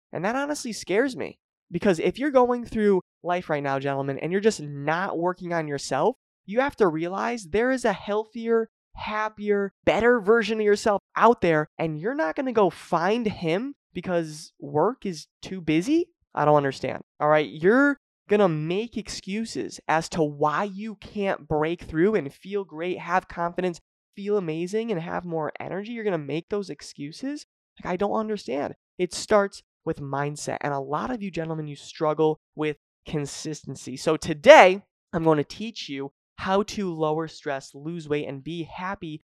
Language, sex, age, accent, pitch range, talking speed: English, male, 20-39, American, 150-205 Hz, 180 wpm